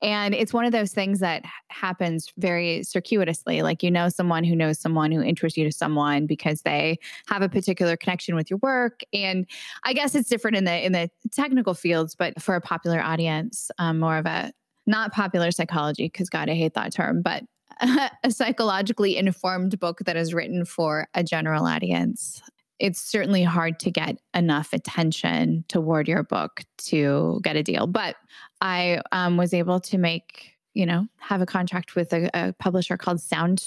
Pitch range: 165-195 Hz